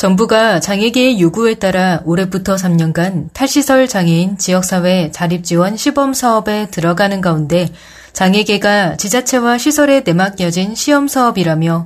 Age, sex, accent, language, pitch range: 30-49, female, native, Korean, 180-250 Hz